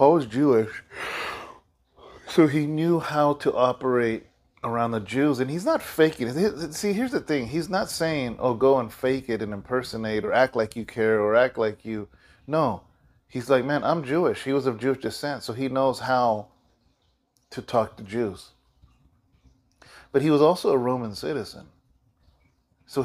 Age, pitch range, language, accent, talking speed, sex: 30-49, 115-150 Hz, English, American, 175 wpm, male